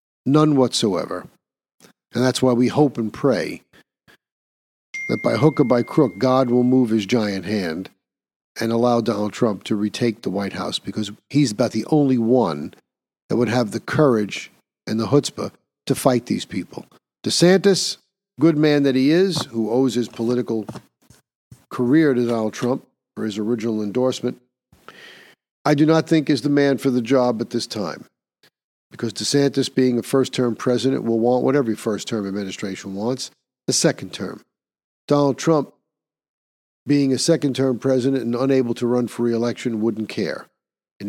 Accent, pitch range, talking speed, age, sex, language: American, 110-135 Hz, 160 wpm, 50-69, male, English